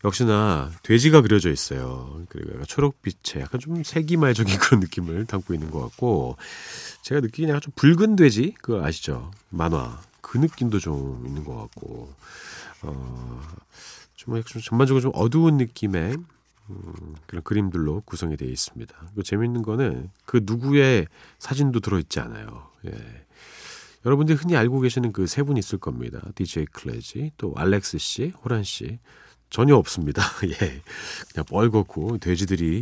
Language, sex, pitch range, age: Korean, male, 90-140 Hz, 40-59